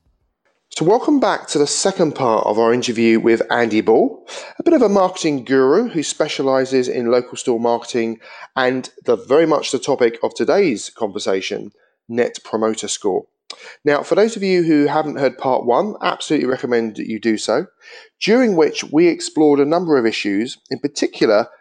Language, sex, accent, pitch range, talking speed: English, male, British, 120-185 Hz, 175 wpm